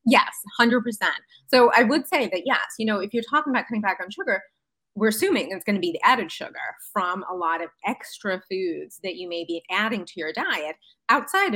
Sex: female